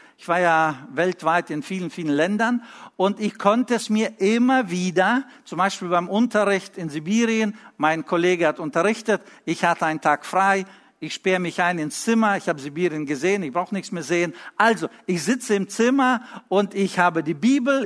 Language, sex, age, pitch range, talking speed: German, male, 60-79, 170-220 Hz, 185 wpm